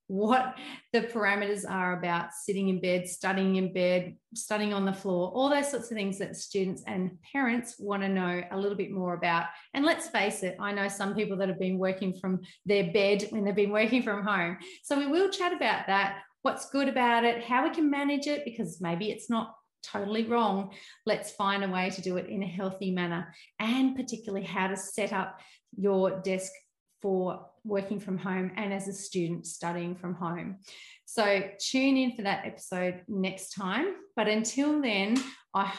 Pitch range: 190-235 Hz